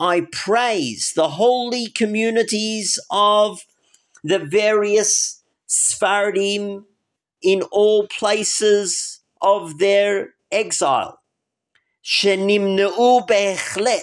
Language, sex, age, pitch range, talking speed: English, male, 50-69, 160-215 Hz, 65 wpm